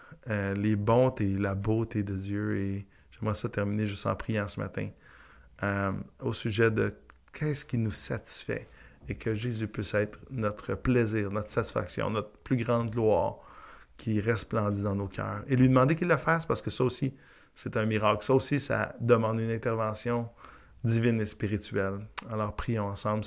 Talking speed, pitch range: 175 wpm, 105-130 Hz